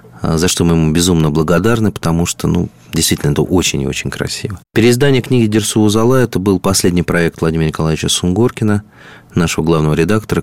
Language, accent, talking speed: Russian, native, 160 wpm